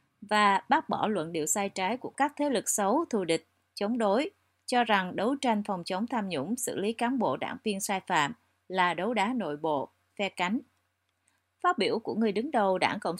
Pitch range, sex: 180-235 Hz, female